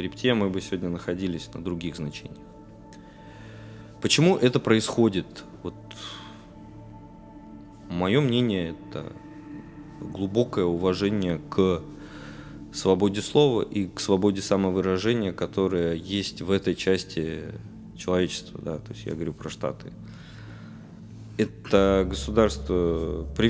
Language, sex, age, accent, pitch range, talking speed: Russian, male, 20-39, native, 70-105 Hz, 100 wpm